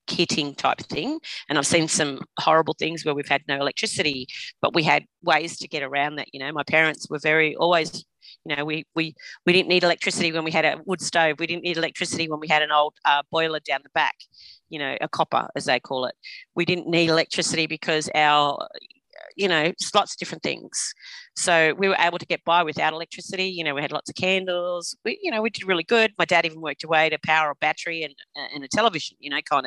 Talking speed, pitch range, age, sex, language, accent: 235 wpm, 155-185 Hz, 40-59, female, English, Australian